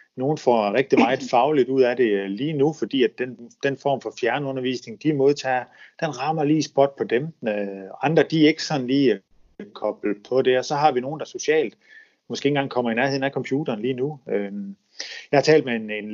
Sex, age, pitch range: male, 30-49, 110-145 Hz